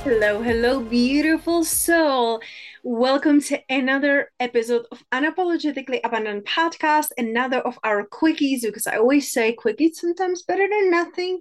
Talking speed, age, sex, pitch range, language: 130 wpm, 20-39, female, 225-290 Hz, English